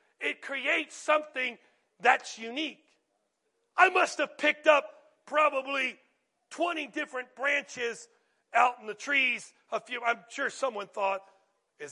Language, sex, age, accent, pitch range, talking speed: English, male, 40-59, American, 230-320 Hz, 125 wpm